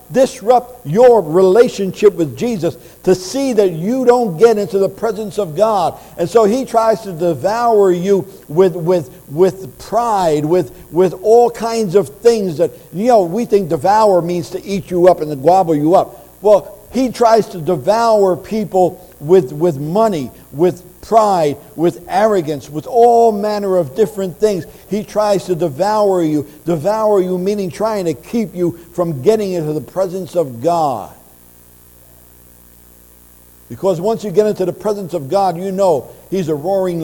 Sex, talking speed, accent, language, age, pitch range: male, 165 wpm, American, English, 60-79, 165-215 Hz